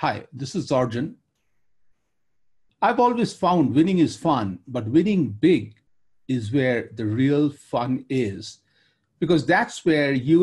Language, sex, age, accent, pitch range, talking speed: English, male, 50-69, Indian, 135-185 Hz, 130 wpm